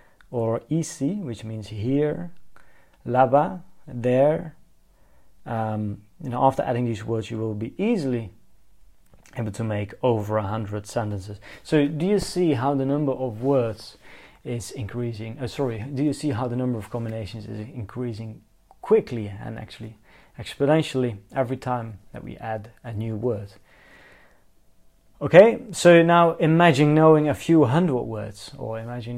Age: 30-49